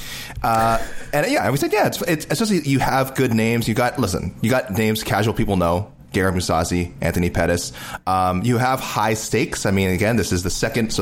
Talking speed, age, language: 220 wpm, 30-49, English